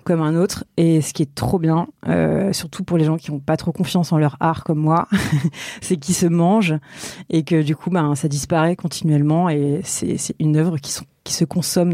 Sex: female